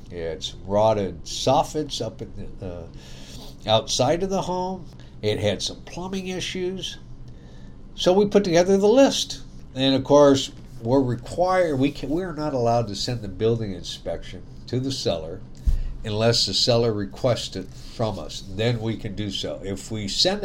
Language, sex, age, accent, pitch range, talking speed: English, male, 60-79, American, 100-135 Hz, 165 wpm